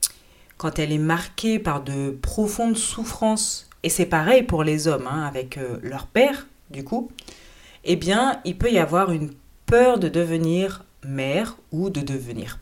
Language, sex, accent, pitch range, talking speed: French, female, French, 140-195 Hz, 160 wpm